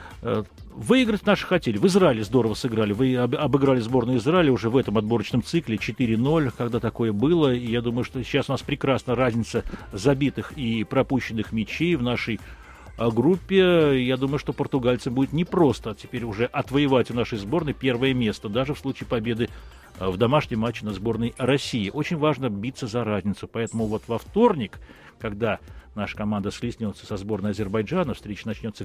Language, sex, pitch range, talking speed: Russian, male, 105-140 Hz, 160 wpm